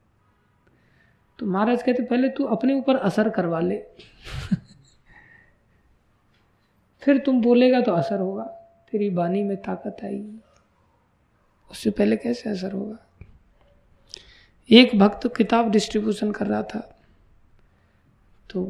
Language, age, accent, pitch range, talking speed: Hindi, 20-39, native, 180-215 Hz, 110 wpm